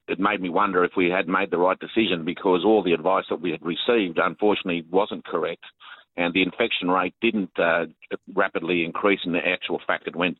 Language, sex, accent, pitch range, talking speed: English, male, Australian, 95-105 Hz, 210 wpm